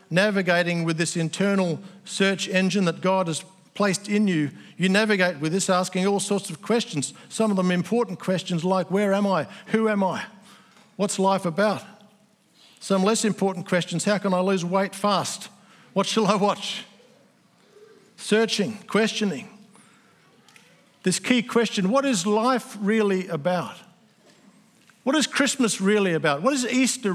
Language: English